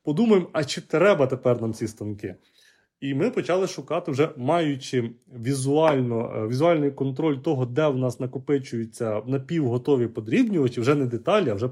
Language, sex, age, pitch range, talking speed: Ukrainian, male, 30-49, 125-165 Hz, 145 wpm